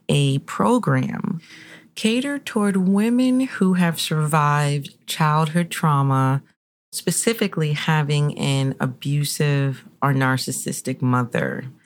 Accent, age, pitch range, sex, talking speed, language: American, 30-49, 135-175 Hz, female, 85 wpm, English